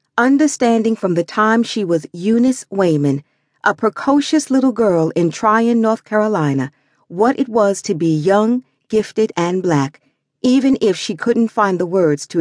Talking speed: 160 wpm